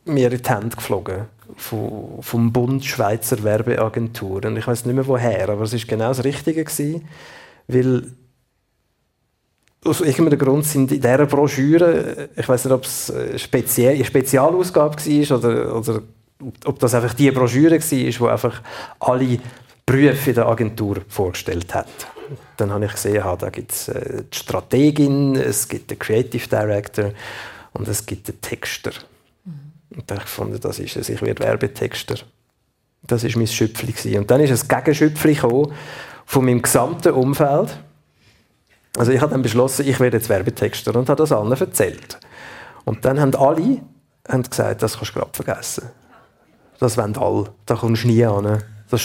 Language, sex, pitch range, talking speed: German, male, 110-140 Hz, 155 wpm